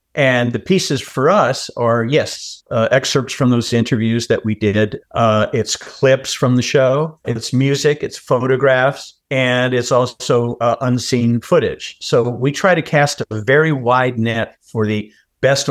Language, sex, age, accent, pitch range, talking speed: English, male, 50-69, American, 110-135 Hz, 165 wpm